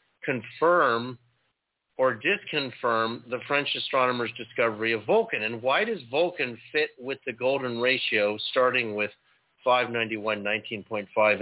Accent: American